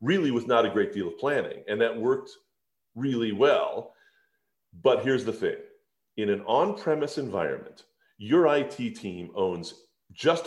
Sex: male